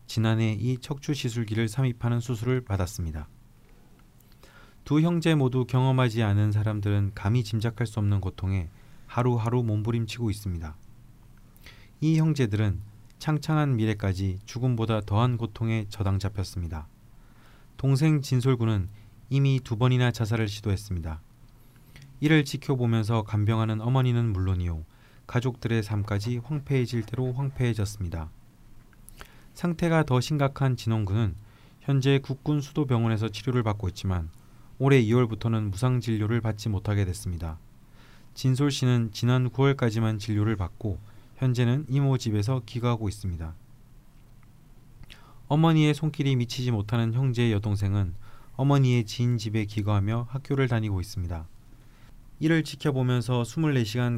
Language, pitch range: Korean, 105-130 Hz